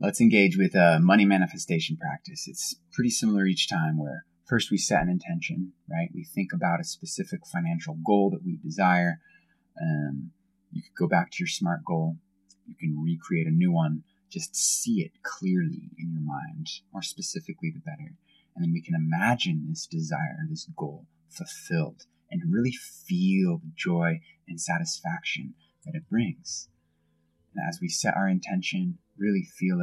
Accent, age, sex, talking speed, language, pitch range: American, 20-39, male, 165 wpm, English, 115-180 Hz